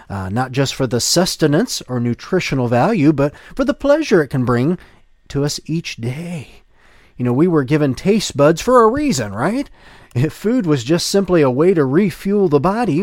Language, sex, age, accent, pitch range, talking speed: English, male, 40-59, American, 110-170 Hz, 195 wpm